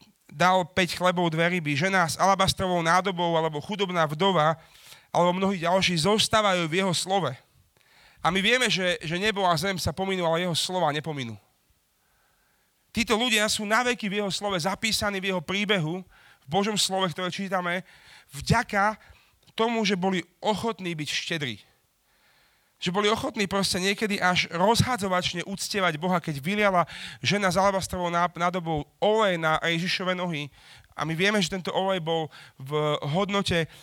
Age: 40-59